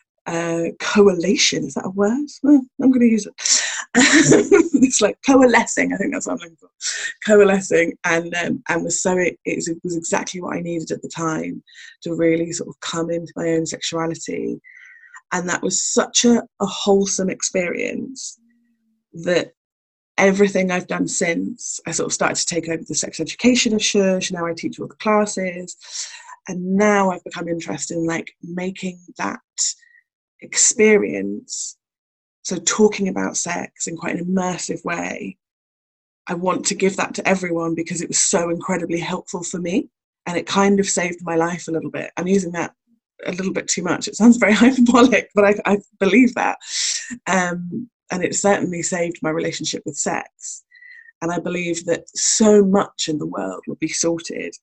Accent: British